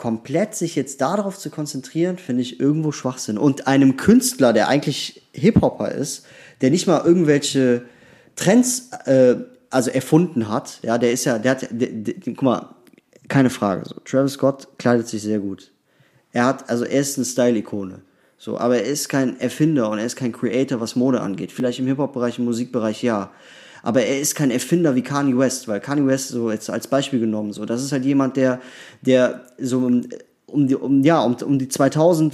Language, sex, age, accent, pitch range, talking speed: German, male, 20-39, German, 125-155 Hz, 195 wpm